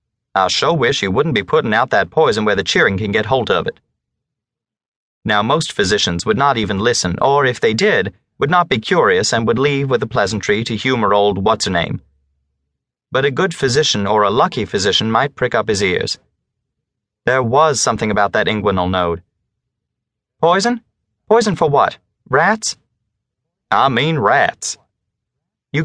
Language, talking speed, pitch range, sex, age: English, 165 wpm, 105-160 Hz, male, 30-49